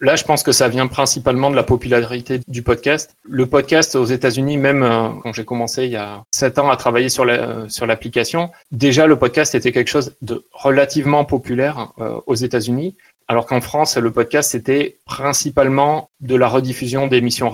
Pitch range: 120-135 Hz